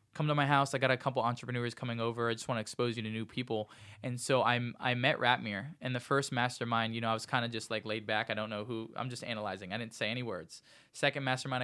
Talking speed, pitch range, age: 280 wpm, 110-135 Hz, 20-39